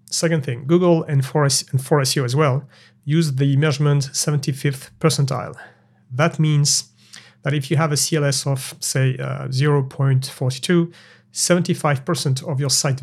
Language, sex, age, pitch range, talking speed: English, male, 40-59, 135-155 Hz, 135 wpm